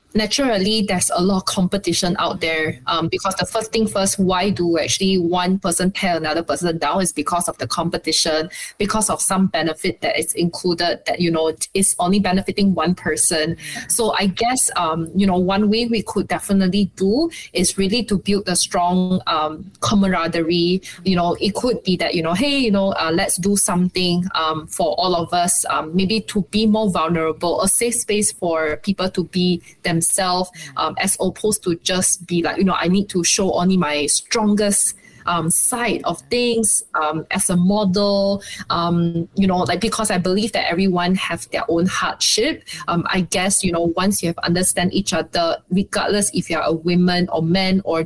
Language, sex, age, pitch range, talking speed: Malay, female, 20-39, 170-200 Hz, 195 wpm